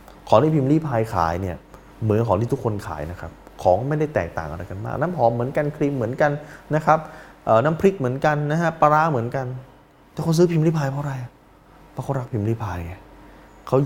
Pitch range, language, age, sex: 110-155 Hz, Thai, 20-39, male